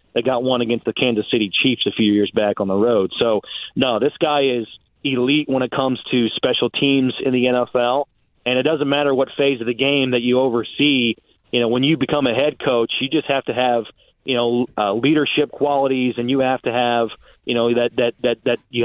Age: 30-49